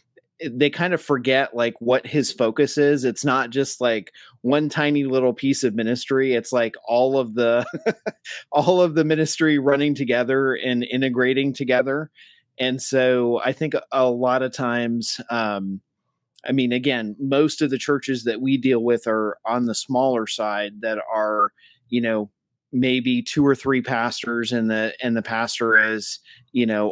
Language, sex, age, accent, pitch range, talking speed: English, male, 30-49, American, 115-135 Hz, 165 wpm